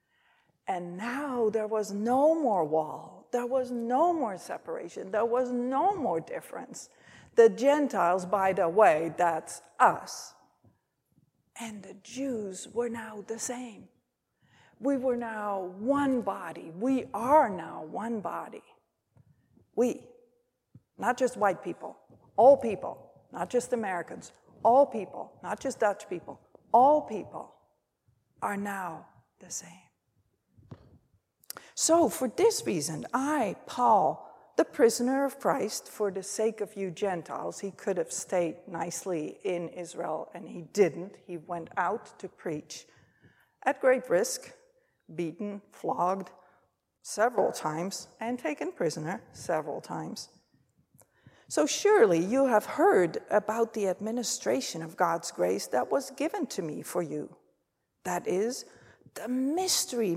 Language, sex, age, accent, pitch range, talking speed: English, female, 60-79, American, 185-265 Hz, 130 wpm